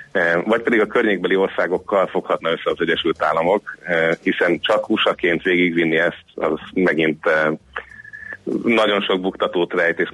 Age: 30-49